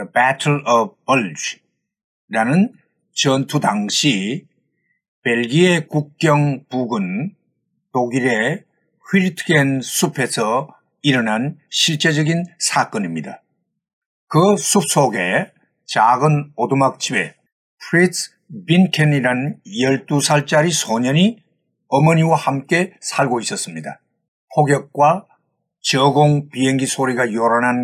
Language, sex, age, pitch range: Korean, male, 50-69, 135-175 Hz